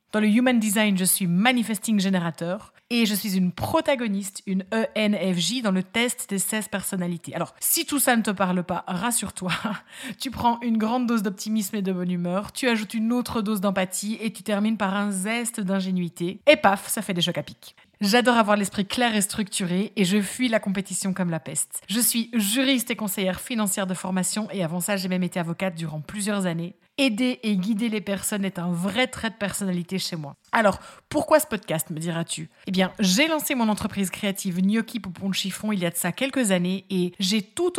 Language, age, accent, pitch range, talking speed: French, 30-49, French, 180-225 Hz, 210 wpm